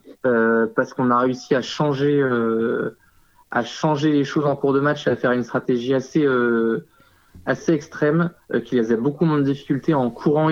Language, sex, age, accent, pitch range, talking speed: French, male, 20-39, French, 125-150 Hz, 190 wpm